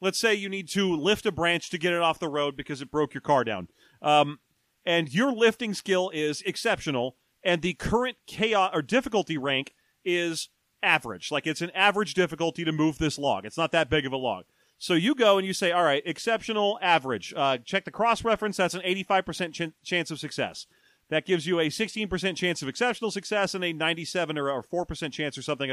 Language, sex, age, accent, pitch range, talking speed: English, male, 40-59, American, 150-205 Hz, 210 wpm